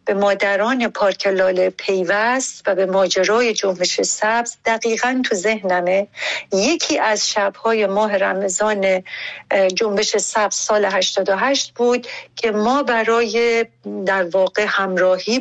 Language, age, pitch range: Persian, 60-79, 195-245 Hz